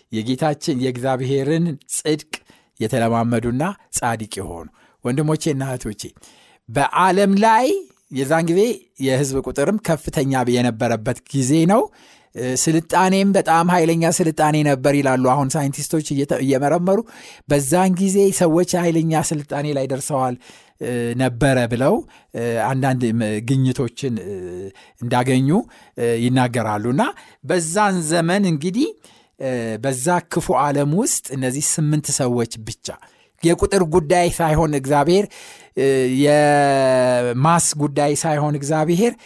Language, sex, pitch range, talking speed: Amharic, male, 125-165 Hz, 90 wpm